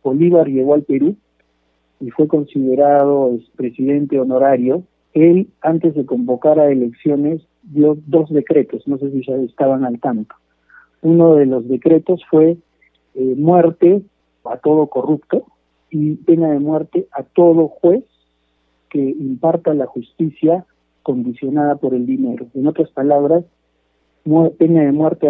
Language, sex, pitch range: Spanish, male, 125-160 Hz